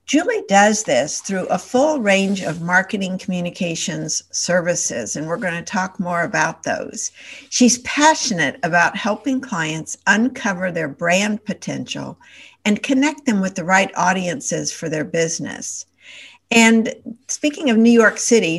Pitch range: 180-235 Hz